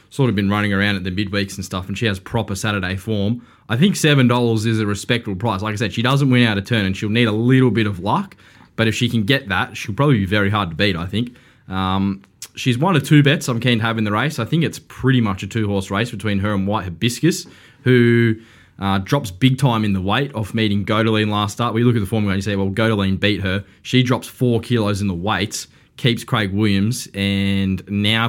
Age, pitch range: 10-29, 95-115 Hz